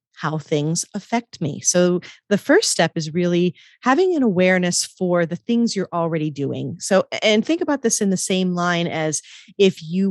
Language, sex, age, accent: English, female, 40-59, American